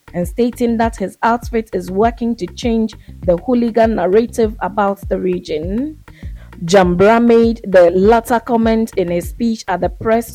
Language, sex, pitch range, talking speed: English, female, 185-230 Hz, 150 wpm